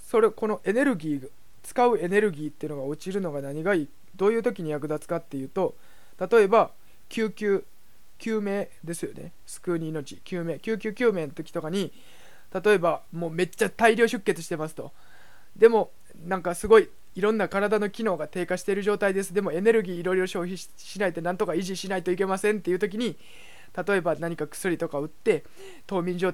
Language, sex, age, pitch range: Japanese, male, 20-39, 165-210 Hz